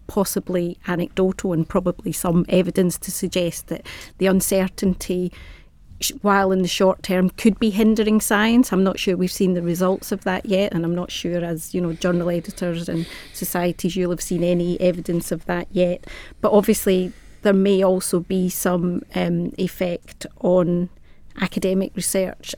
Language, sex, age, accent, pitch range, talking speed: English, female, 30-49, British, 175-195 Hz, 160 wpm